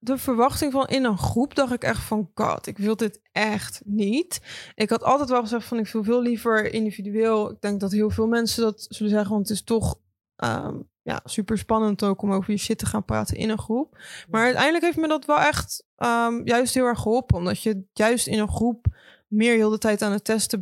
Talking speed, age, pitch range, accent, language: 235 wpm, 20-39, 205-235 Hz, Dutch, Dutch